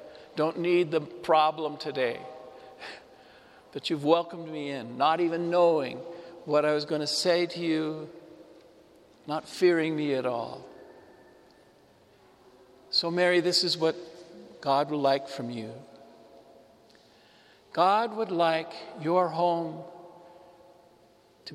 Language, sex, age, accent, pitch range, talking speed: English, male, 60-79, American, 155-185 Hz, 115 wpm